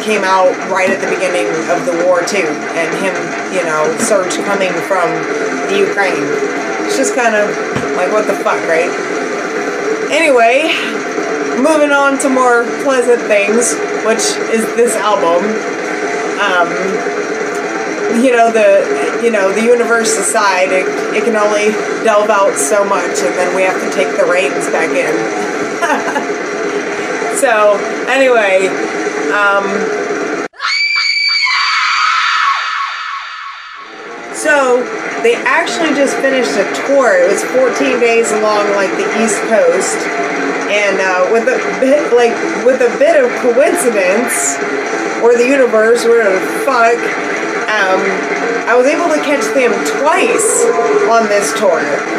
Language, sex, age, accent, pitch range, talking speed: English, female, 30-49, American, 220-295 Hz, 125 wpm